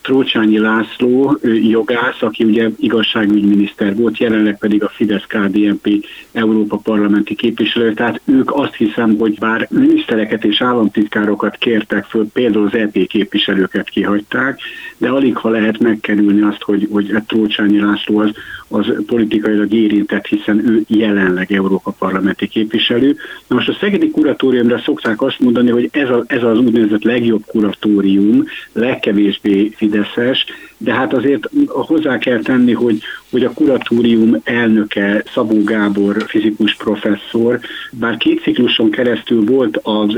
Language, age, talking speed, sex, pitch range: Hungarian, 60-79, 130 wpm, male, 105-120 Hz